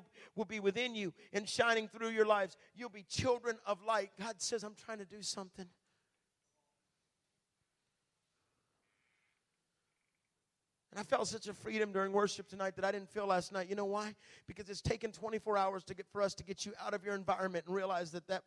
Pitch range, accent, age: 170-210 Hz, American, 40-59